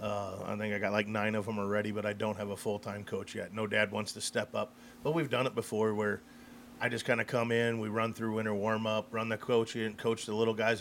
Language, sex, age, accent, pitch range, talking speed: English, male, 40-59, American, 110-125 Hz, 270 wpm